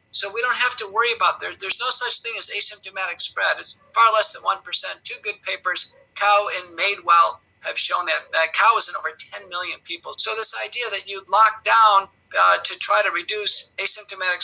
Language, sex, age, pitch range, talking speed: English, male, 50-69, 195-230 Hz, 210 wpm